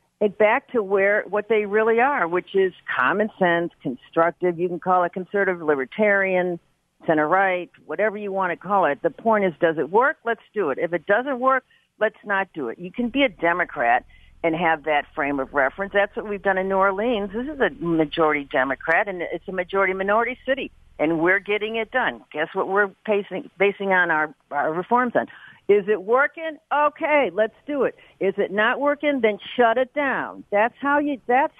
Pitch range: 175-250 Hz